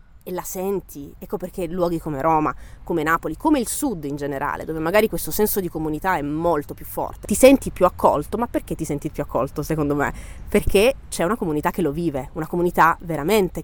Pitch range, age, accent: 150-195 Hz, 20-39, native